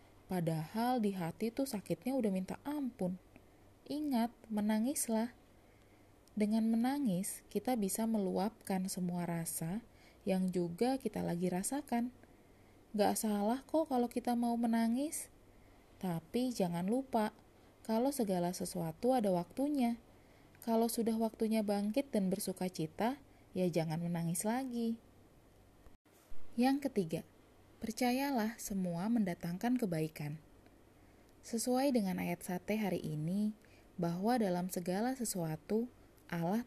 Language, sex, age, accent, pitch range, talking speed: Indonesian, female, 20-39, native, 180-235 Hz, 105 wpm